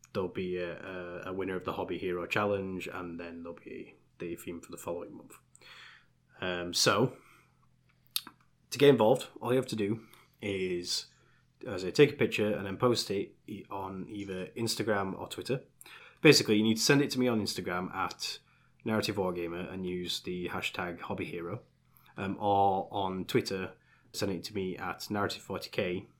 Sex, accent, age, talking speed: male, British, 20-39, 165 wpm